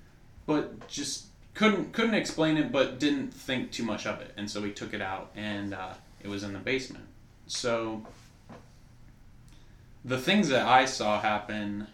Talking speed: 165 wpm